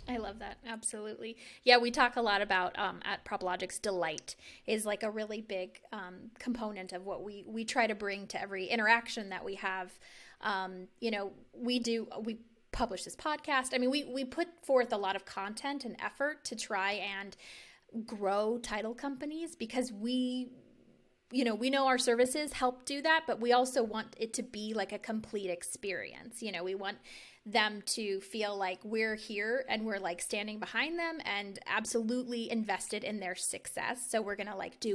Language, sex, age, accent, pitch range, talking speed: English, female, 20-39, American, 200-245 Hz, 190 wpm